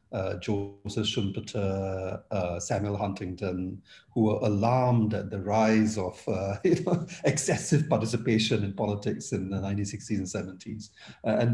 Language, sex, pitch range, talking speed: English, male, 95-115 Hz, 130 wpm